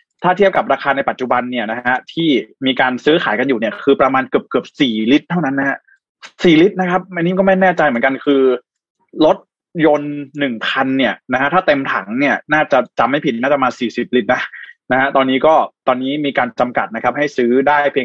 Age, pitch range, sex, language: 20-39, 125-155 Hz, male, Thai